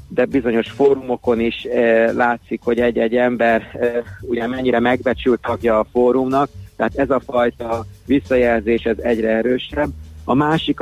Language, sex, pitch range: Hungarian, male, 110-130 Hz